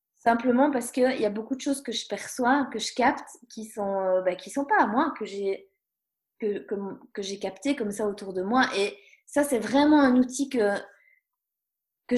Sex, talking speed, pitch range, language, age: female, 215 wpm, 205-265 Hz, French, 20-39